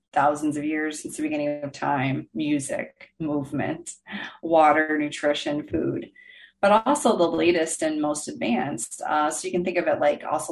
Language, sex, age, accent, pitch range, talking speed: English, female, 30-49, American, 155-235 Hz, 165 wpm